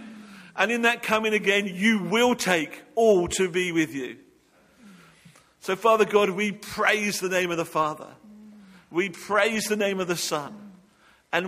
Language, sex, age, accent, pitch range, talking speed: English, male, 50-69, British, 150-200 Hz, 160 wpm